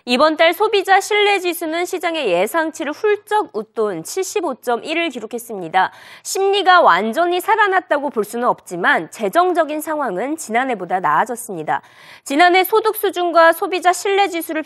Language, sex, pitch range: Korean, female, 250-360 Hz